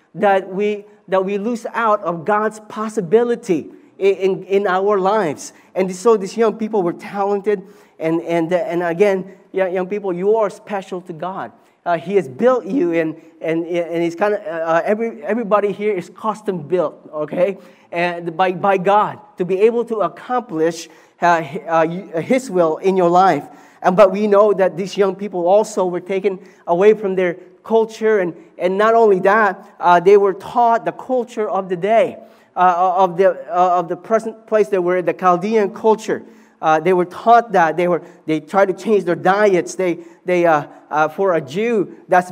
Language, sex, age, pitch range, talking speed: English, male, 30-49, 175-215 Hz, 185 wpm